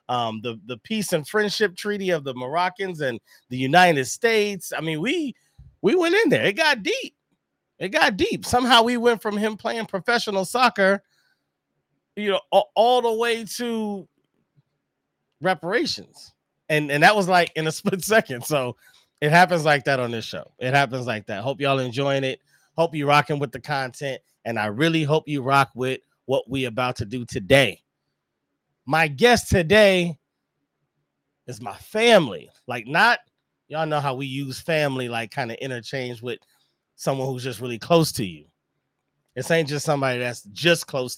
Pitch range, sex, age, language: 130-185 Hz, male, 30-49, English